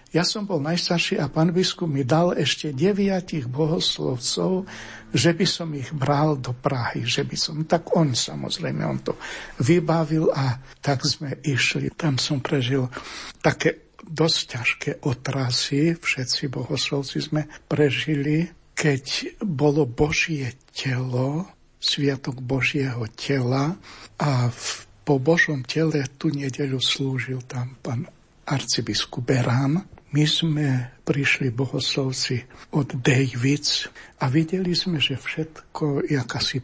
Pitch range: 135-155 Hz